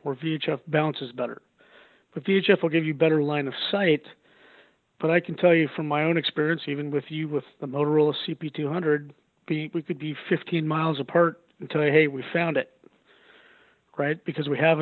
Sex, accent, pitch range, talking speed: male, American, 150-175 Hz, 185 wpm